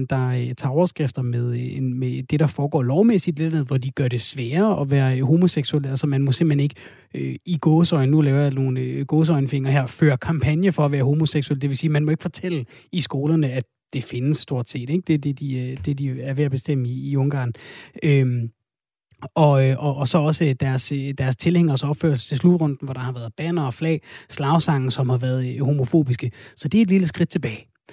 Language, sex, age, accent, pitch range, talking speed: Danish, male, 30-49, native, 135-175 Hz, 185 wpm